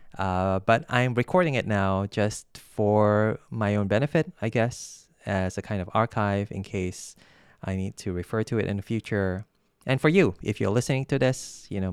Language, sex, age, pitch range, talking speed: English, male, 20-39, 95-115 Hz, 195 wpm